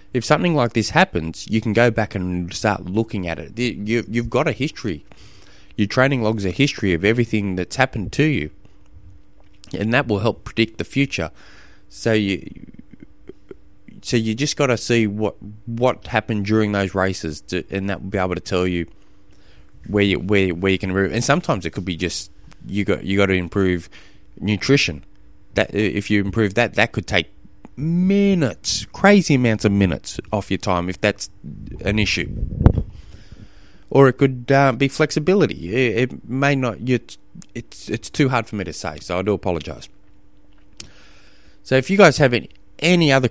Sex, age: male, 20-39